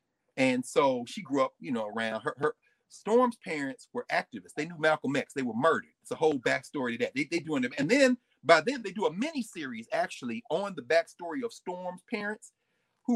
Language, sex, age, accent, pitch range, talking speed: English, male, 40-59, American, 165-250 Hz, 220 wpm